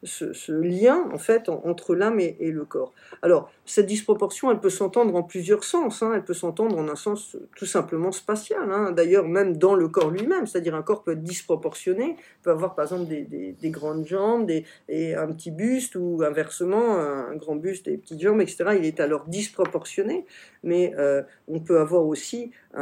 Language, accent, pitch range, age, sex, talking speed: French, French, 170-225 Hz, 50-69, female, 210 wpm